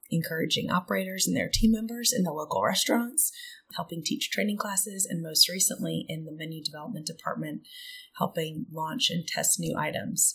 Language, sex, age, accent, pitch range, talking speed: English, female, 30-49, American, 165-225 Hz, 160 wpm